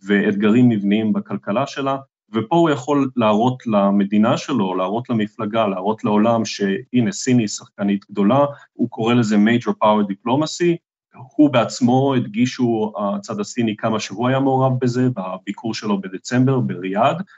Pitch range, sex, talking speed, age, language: 100-135 Hz, male, 135 wpm, 30-49, Hebrew